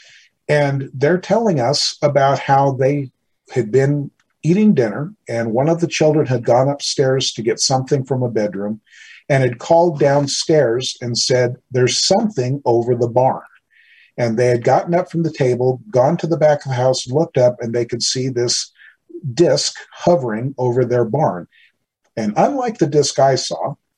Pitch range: 120-150 Hz